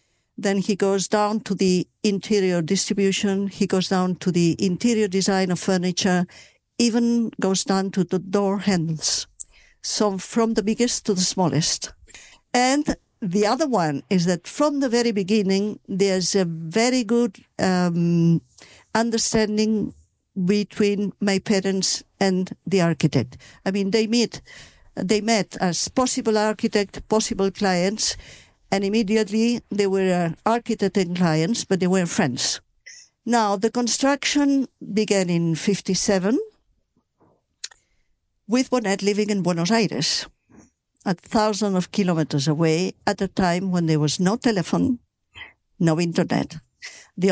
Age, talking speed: 50-69, 130 wpm